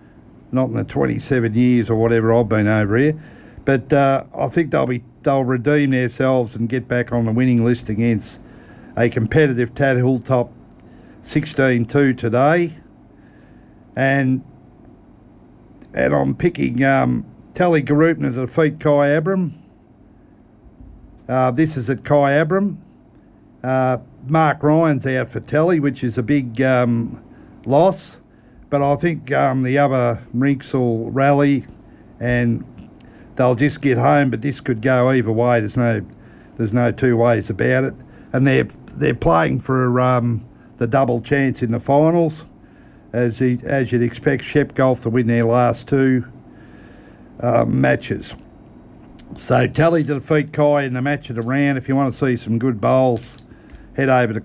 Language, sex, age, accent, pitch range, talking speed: English, male, 50-69, Australian, 120-140 Hz, 155 wpm